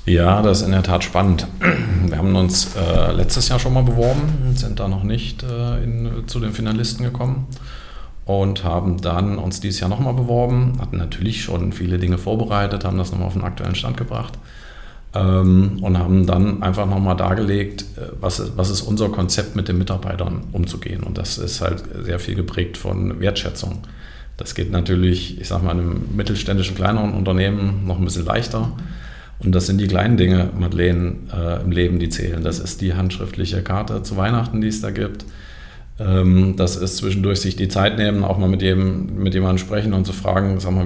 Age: 40-59